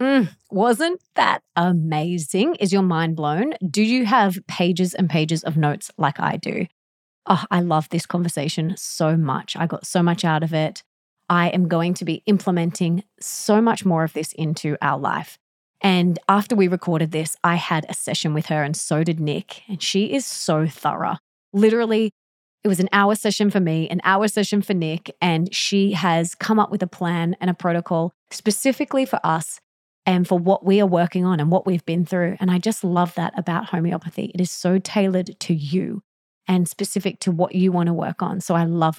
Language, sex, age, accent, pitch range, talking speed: English, female, 20-39, Australian, 170-205 Hz, 200 wpm